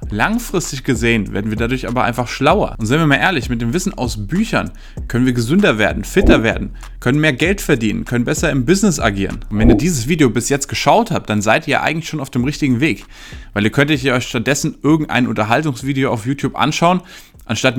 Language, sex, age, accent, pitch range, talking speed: German, male, 20-39, German, 115-150 Hz, 210 wpm